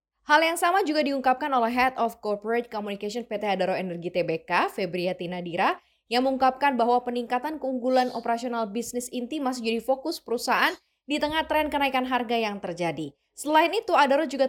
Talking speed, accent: 160 wpm, native